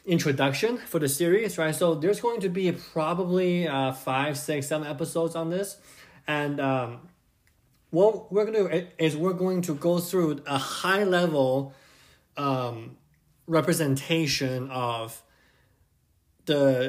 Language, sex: English, male